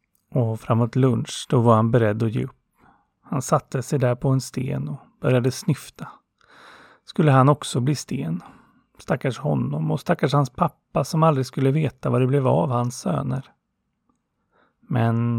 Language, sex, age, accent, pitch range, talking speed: Swedish, male, 30-49, native, 120-145 Hz, 160 wpm